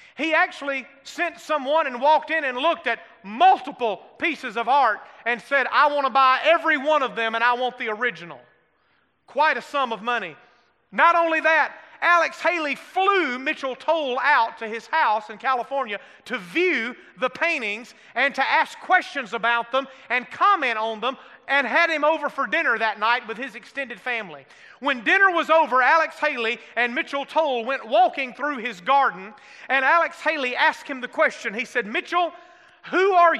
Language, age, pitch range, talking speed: English, 30-49, 235-310 Hz, 180 wpm